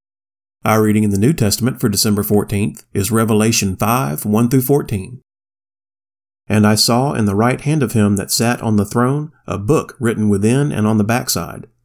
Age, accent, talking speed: 30-49, American, 175 wpm